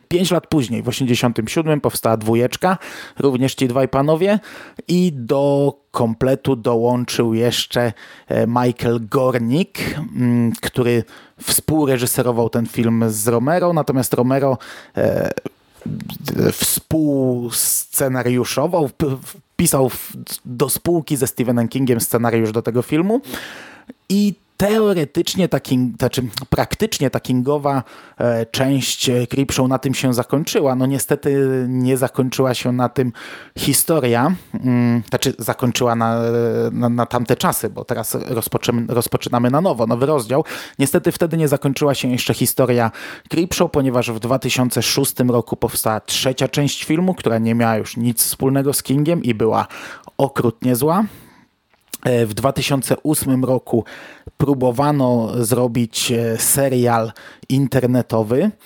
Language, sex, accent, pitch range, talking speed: Polish, male, native, 120-140 Hz, 110 wpm